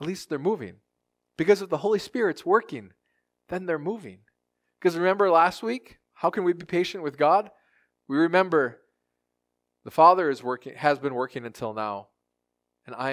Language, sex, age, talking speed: English, male, 20-39, 170 wpm